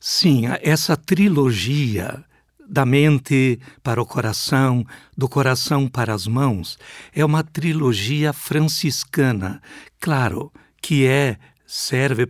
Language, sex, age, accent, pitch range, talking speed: Portuguese, male, 60-79, Brazilian, 125-160 Hz, 105 wpm